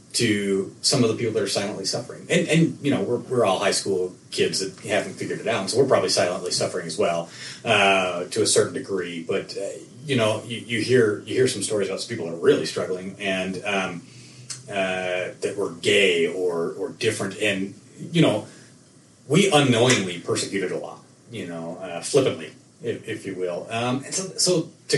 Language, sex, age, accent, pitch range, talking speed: English, male, 30-49, American, 95-140 Hz, 205 wpm